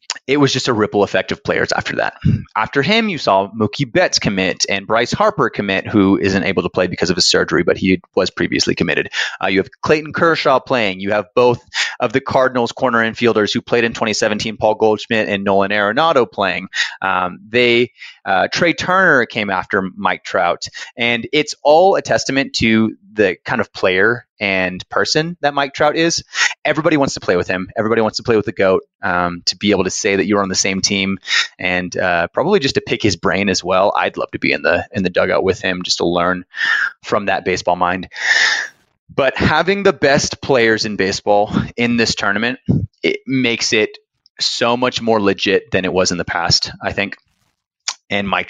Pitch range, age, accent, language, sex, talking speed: 100-135 Hz, 30-49, American, English, male, 205 wpm